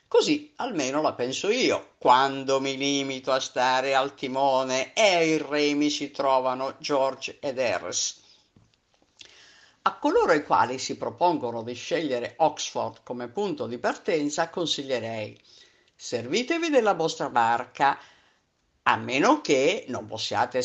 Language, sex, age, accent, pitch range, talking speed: Italian, female, 50-69, native, 125-205 Hz, 125 wpm